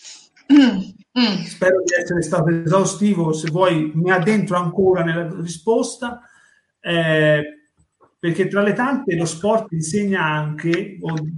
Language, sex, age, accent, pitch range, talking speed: Italian, male, 30-49, native, 155-190 Hz, 115 wpm